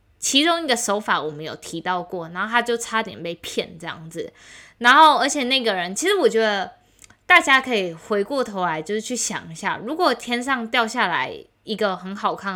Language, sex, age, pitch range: Chinese, female, 20-39, 185-250 Hz